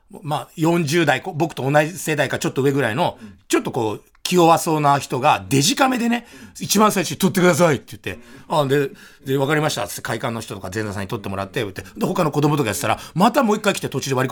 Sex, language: male, Japanese